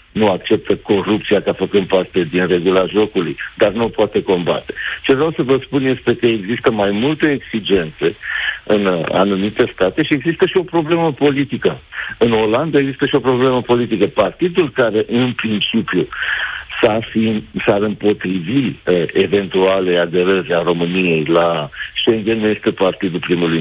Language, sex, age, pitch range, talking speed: Romanian, male, 60-79, 95-125 Hz, 150 wpm